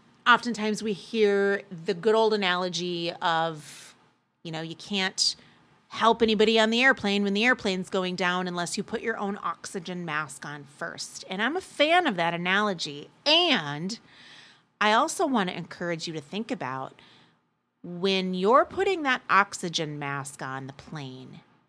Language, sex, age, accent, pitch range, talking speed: English, female, 30-49, American, 185-240 Hz, 160 wpm